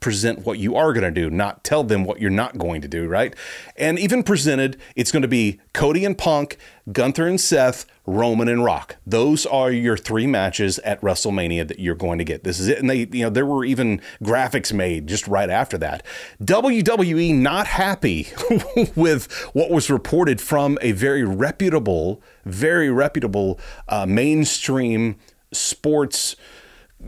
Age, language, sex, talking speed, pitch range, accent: 30-49, English, male, 165 wpm, 100-145 Hz, American